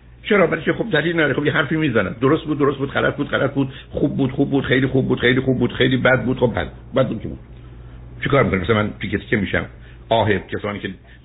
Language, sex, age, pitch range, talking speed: Persian, male, 60-79, 95-140 Hz, 235 wpm